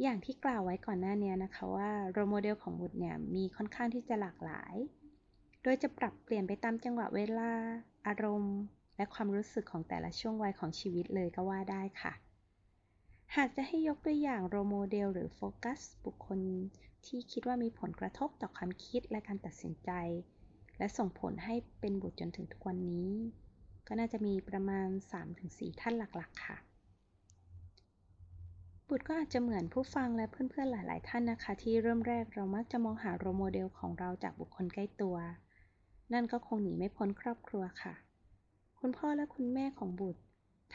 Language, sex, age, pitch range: Thai, female, 20-39, 175-235 Hz